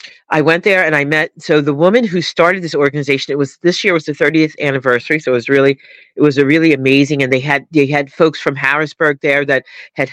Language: English